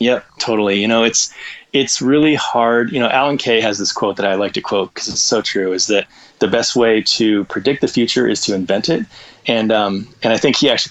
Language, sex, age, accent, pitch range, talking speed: English, male, 20-39, American, 105-125 Hz, 240 wpm